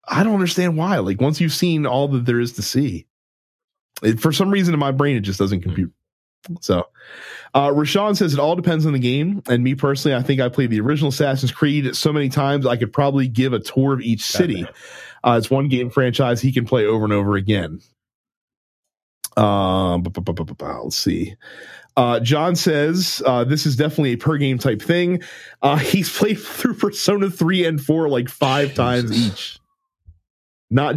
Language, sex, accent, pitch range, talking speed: English, male, American, 105-150 Hz, 180 wpm